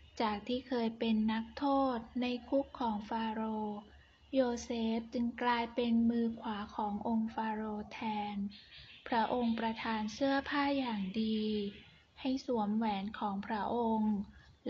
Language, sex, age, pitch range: Thai, female, 10-29, 220-260 Hz